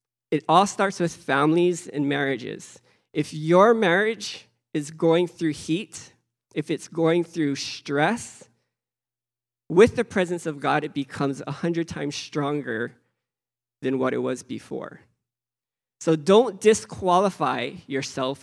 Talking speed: 125 wpm